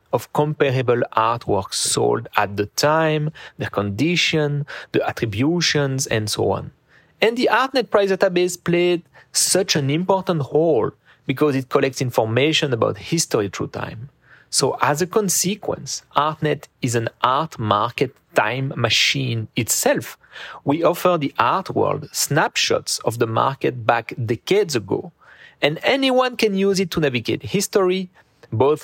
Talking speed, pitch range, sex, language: 135 wpm, 120-170 Hz, male, English